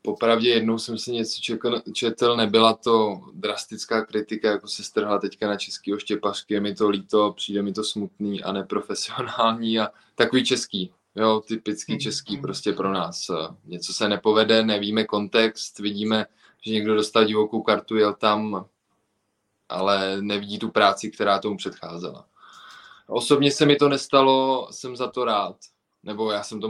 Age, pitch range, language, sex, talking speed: 20-39, 100-115 Hz, Czech, male, 155 wpm